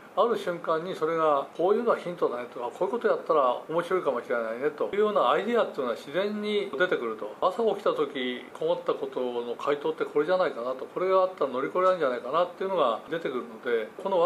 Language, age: Japanese, 40-59